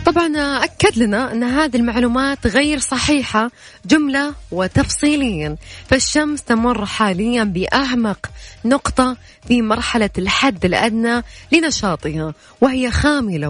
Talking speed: 100 wpm